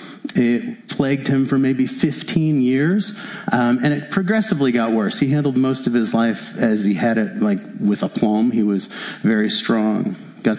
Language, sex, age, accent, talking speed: English, male, 40-59, American, 180 wpm